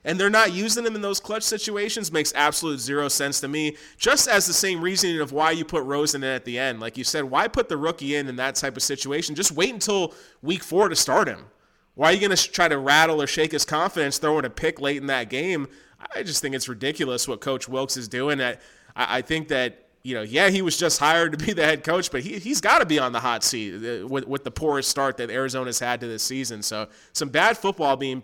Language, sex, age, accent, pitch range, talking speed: English, male, 20-39, American, 135-165 Hz, 250 wpm